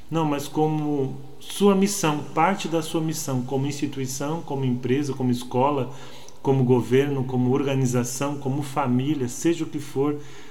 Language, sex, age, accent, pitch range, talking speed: Portuguese, male, 40-59, Brazilian, 125-150 Hz, 145 wpm